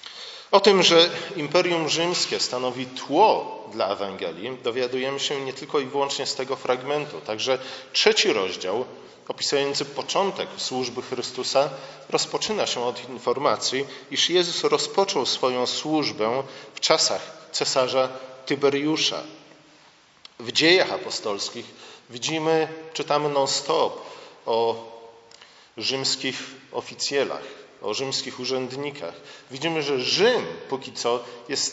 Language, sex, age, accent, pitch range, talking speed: Polish, male, 40-59, native, 125-160 Hz, 105 wpm